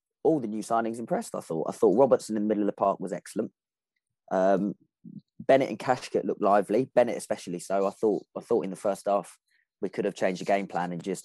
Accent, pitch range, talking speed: British, 95-120 Hz, 235 wpm